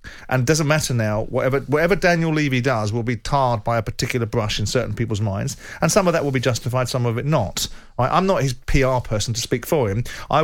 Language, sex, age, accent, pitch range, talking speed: English, male, 40-59, British, 120-140 Hz, 240 wpm